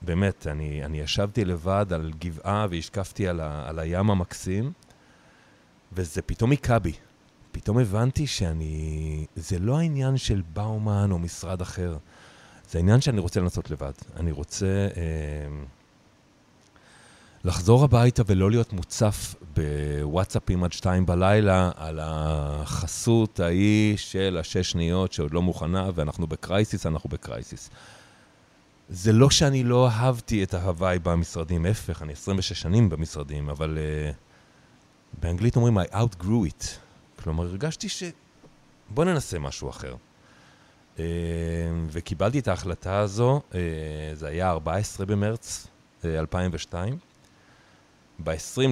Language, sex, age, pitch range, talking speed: Hebrew, male, 40-59, 80-105 Hz, 120 wpm